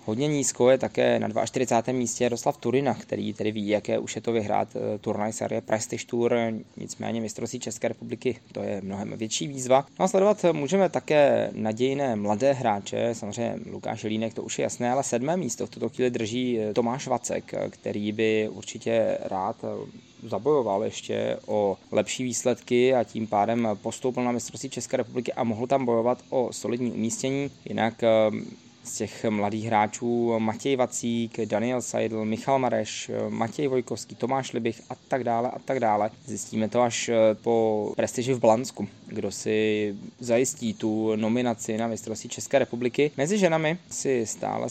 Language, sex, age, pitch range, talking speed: Czech, male, 20-39, 110-130 Hz, 160 wpm